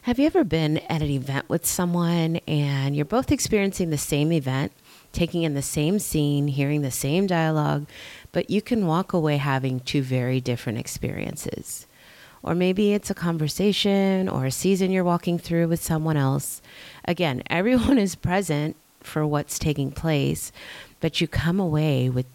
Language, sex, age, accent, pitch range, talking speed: English, female, 30-49, American, 135-175 Hz, 165 wpm